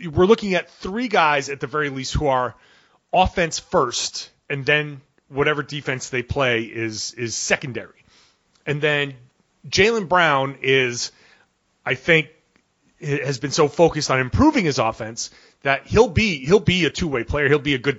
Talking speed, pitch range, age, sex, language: 165 wpm, 125-160 Hz, 30-49, male, English